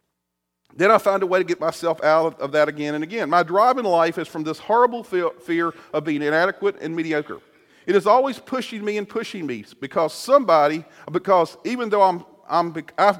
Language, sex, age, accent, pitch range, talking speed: English, male, 40-59, American, 150-210 Hz, 200 wpm